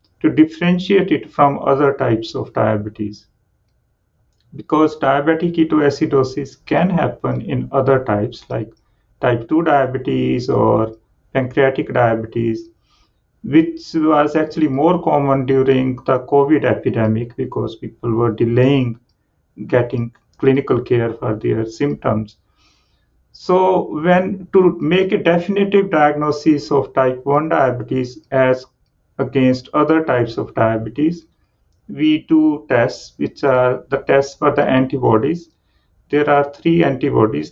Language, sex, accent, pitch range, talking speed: English, male, Indian, 120-155 Hz, 115 wpm